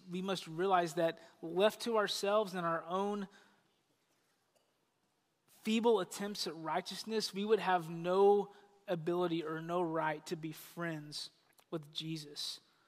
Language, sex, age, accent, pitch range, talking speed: English, male, 20-39, American, 170-205 Hz, 125 wpm